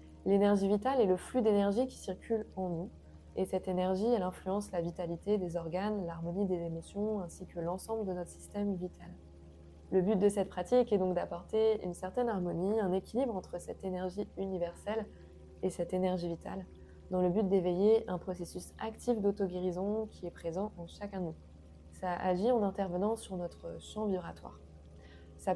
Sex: female